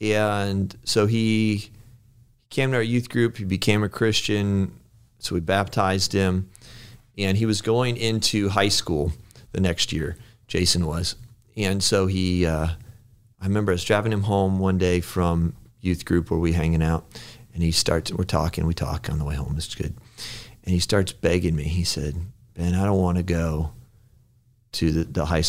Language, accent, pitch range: English, American, 90-120 Hz